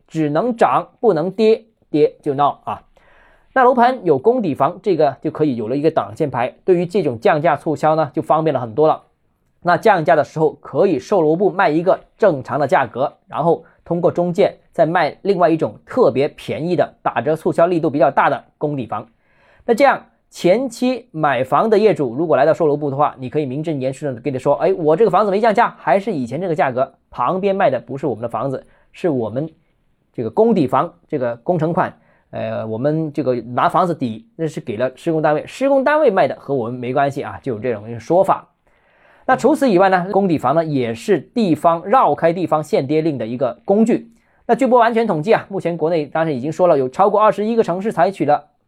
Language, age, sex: Chinese, 20-39, male